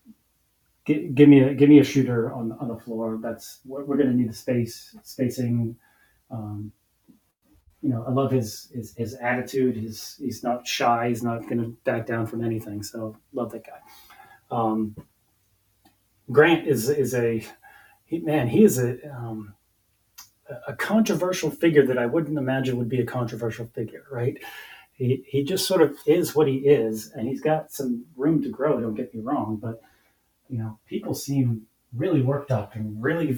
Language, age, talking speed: English, 30-49, 175 wpm